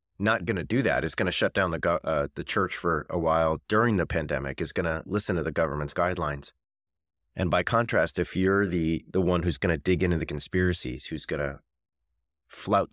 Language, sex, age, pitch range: English, male, 30-49, 75-95 Hz